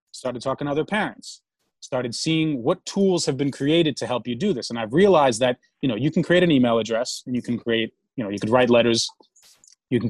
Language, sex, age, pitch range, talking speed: English, male, 30-49, 120-155 Hz, 245 wpm